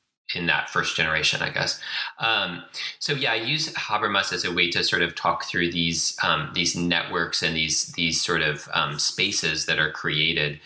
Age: 30-49